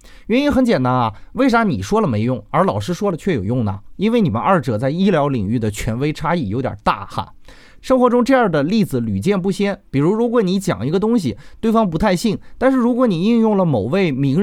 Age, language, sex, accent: 30-49, Chinese, male, native